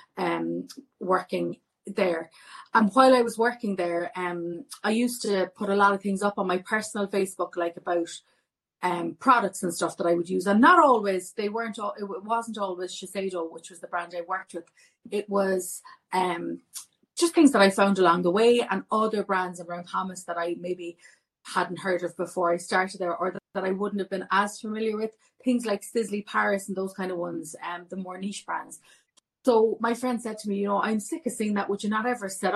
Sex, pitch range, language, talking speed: female, 180-220 Hz, English, 220 wpm